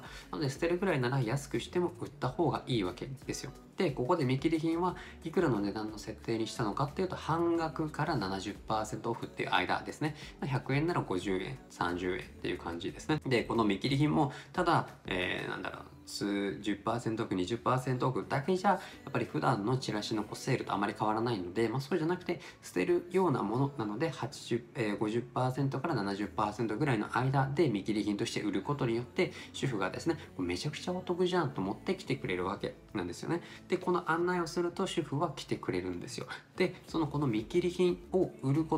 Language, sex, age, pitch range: Japanese, male, 20-39, 110-165 Hz